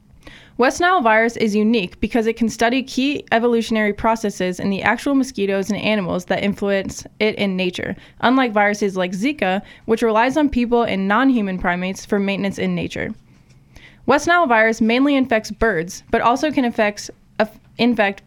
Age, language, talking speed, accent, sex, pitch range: 20-39, English, 160 wpm, American, female, 200-240 Hz